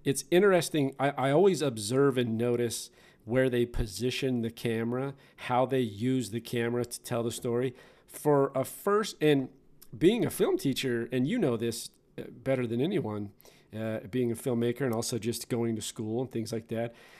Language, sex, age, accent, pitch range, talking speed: English, male, 40-59, American, 115-135 Hz, 180 wpm